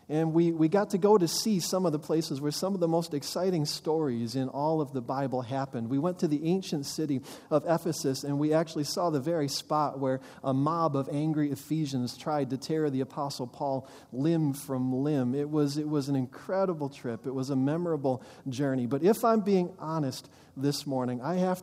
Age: 40-59